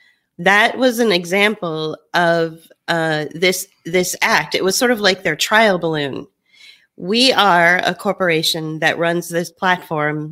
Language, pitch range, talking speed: English, 160-210 Hz, 145 wpm